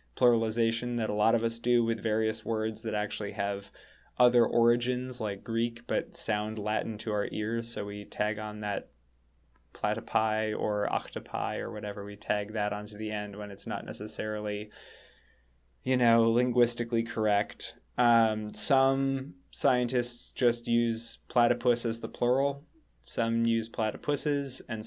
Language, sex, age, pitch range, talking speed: English, male, 20-39, 105-125 Hz, 145 wpm